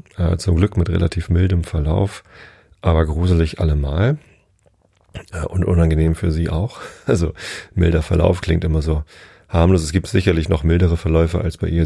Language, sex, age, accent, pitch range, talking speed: German, male, 30-49, German, 80-90 Hz, 150 wpm